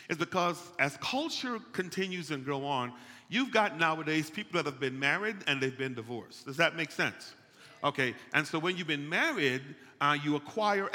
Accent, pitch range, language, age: American, 145-185 Hz, English, 40-59